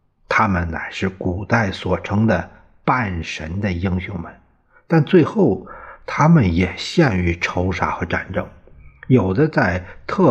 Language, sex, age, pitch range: Chinese, male, 50-69, 90-130 Hz